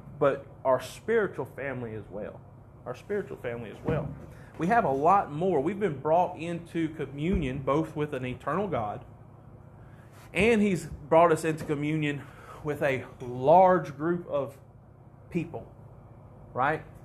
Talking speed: 135 wpm